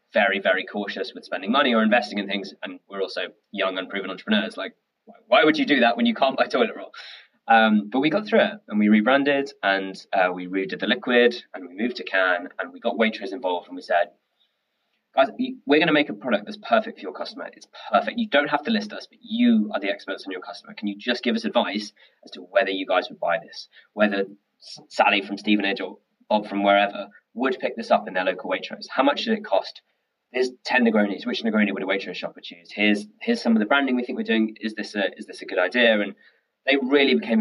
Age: 20-39